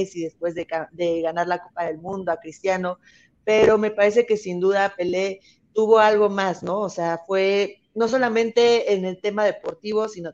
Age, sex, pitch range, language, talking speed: 30-49, female, 175-210 Hz, Spanish, 185 wpm